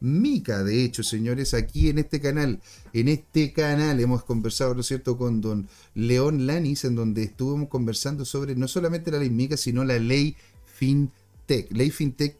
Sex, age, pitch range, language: male, 40-59, 125-160 Hz, Spanish